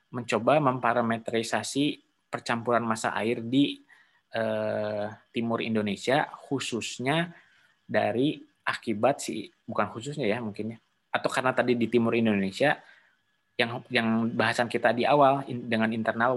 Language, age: Indonesian, 20-39